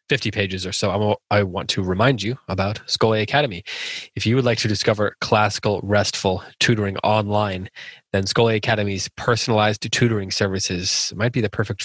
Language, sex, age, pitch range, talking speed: English, male, 20-39, 100-120 Hz, 160 wpm